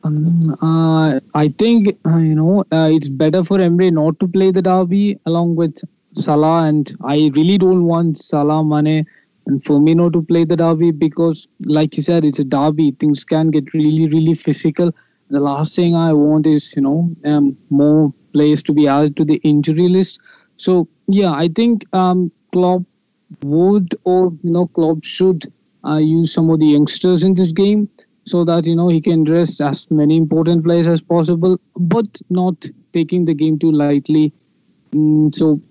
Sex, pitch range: male, 150-175 Hz